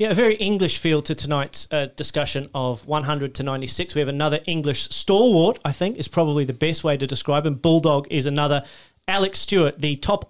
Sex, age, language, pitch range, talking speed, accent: male, 30-49, English, 140-170 Hz, 205 wpm, Australian